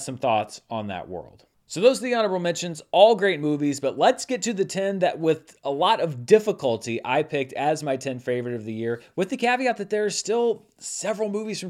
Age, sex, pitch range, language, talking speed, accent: 30-49, male, 145-200 Hz, English, 230 wpm, American